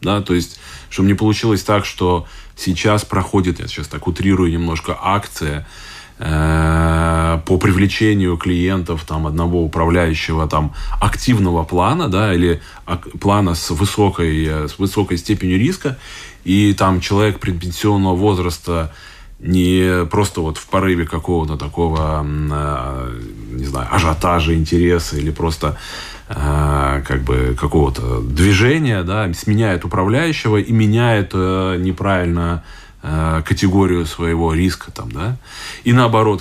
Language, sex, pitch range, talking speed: Russian, male, 80-100 Hz, 115 wpm